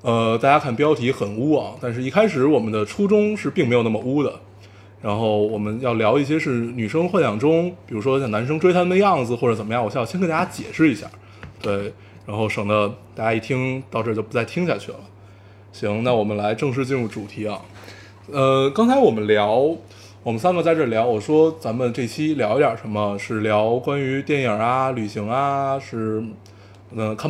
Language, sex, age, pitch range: Chinese, male, 20-39, 105-140 Hz